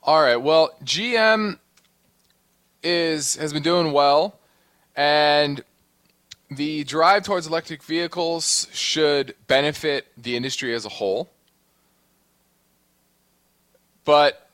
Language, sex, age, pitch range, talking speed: English, male, 20-39, 110-150 Hz, 95 wpm